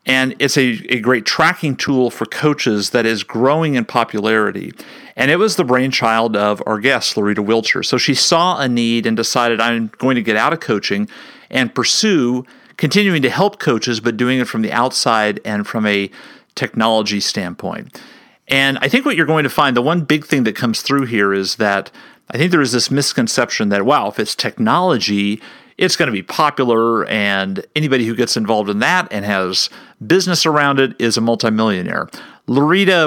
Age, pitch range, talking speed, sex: 40-59, 115-150 Hz, 190 wpm, male